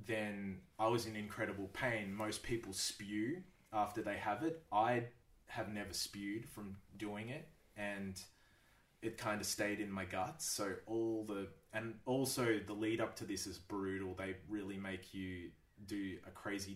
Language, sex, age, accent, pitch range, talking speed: English, male, 20-39, Australian, 95-105 Hz, 170 wpm